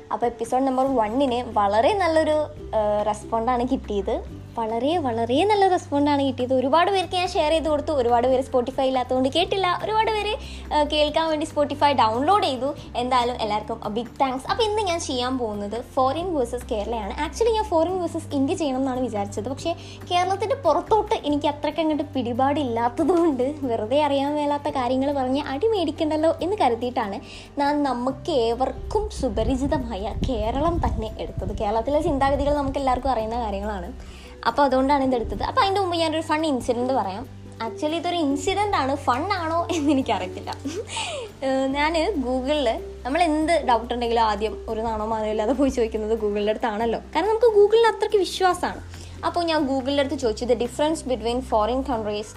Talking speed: 140 wpm